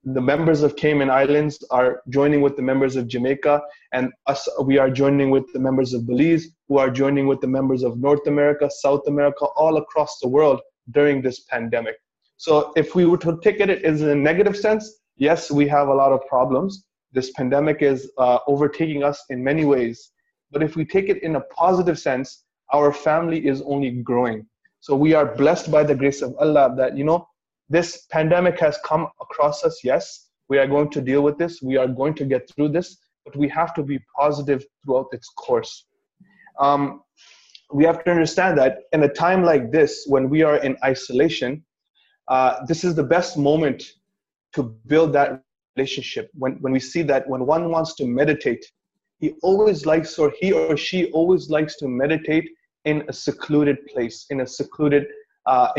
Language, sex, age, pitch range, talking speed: English, male, 20-39, 135-165 Hz, 190 wpm